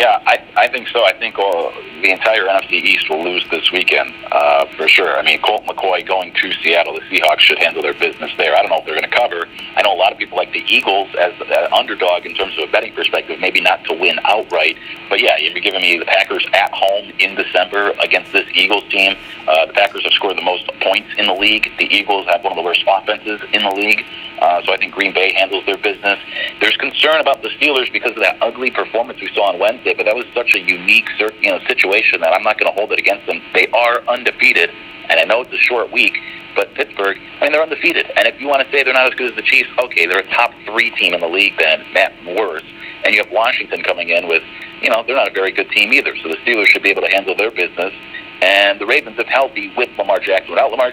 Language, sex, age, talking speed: English, male, 40-59, 260 wpm